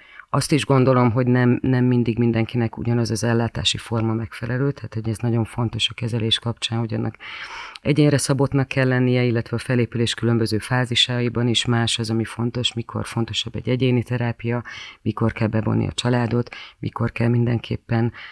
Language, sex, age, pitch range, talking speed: Hungarian, female, 30-49, 115-130 Hz, 165 wpm